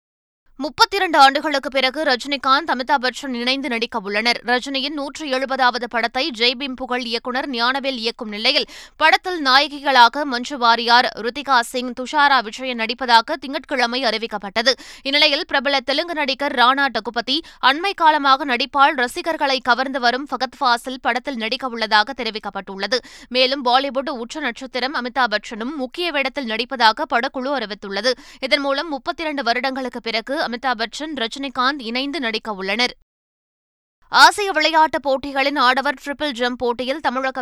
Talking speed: 115 wpm